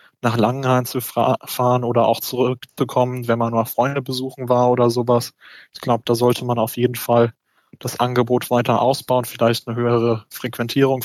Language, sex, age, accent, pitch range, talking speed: German, male, 20-39, German, 120-130 Hz, 170 wpm